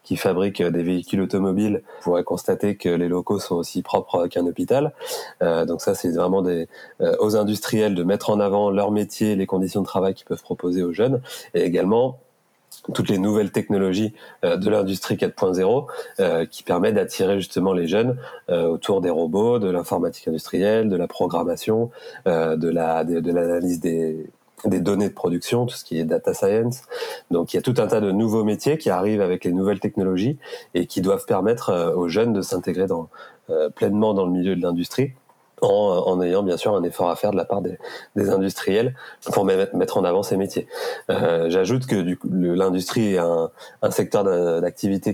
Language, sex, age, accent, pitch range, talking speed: English, male, 30-49, French, 90-110 Hz, 190 wpm